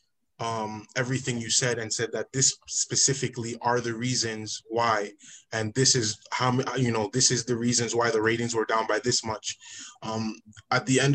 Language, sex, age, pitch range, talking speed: English, male, 20-39, 115-130 Hz, 190 wpm